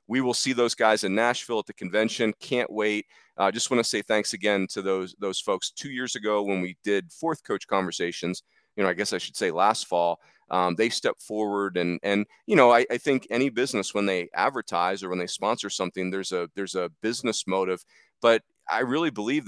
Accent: American